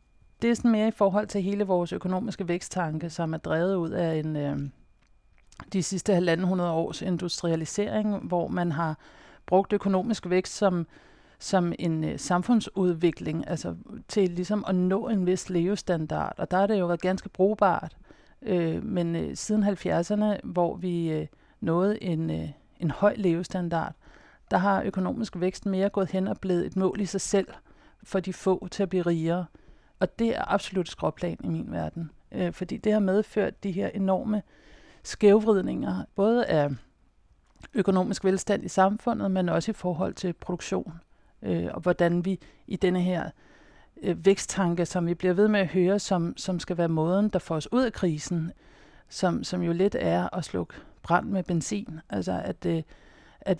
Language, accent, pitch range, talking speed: Danish, native, 170-200 Hz, 160 wpm